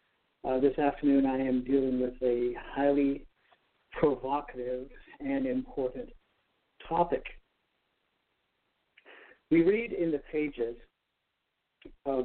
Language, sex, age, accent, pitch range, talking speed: English, male, 60-79, American, 135-180 Hz, 95 wpm